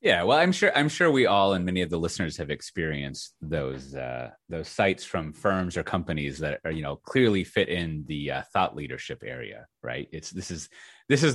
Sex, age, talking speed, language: male, 30-49, 215 wpm, English